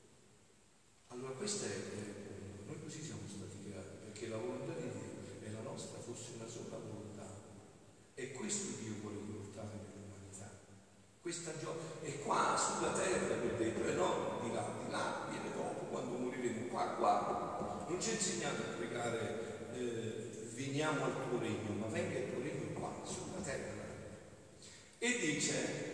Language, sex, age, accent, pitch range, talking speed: Italian, male, 50-69, native, 105-175 Hz, 150 wpm